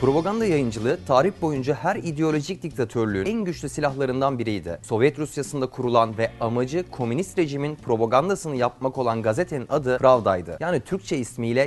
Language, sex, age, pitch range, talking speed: Turkish, male, 30-49, 120-165 Hz, 140 wpm